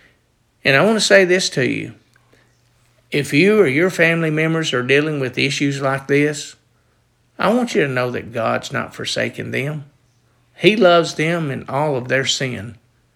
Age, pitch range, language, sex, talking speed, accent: 50-69, 130-165 Hz, English, male, 175 wpm, American